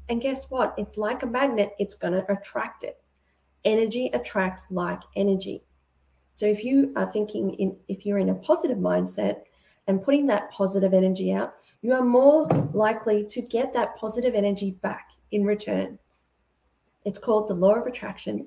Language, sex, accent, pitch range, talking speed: English, female, Australian, 185-280 Hz, 165 wpm